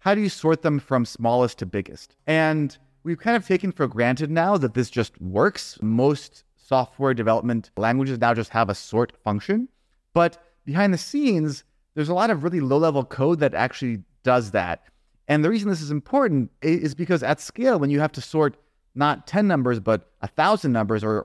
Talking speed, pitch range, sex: 195 wpm, 115-165 Hz, male